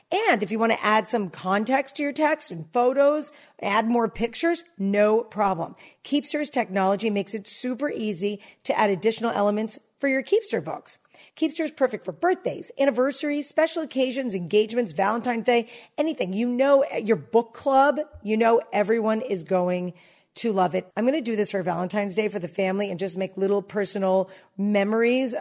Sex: female